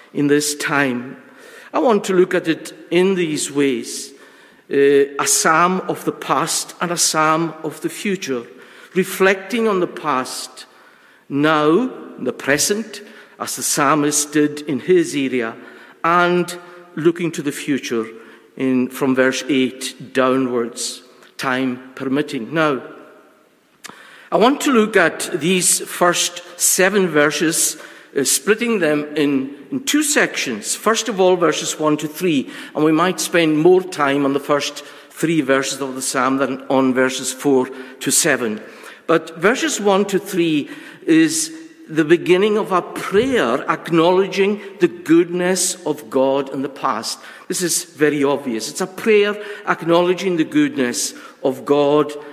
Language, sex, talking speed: English, male, 140 wpm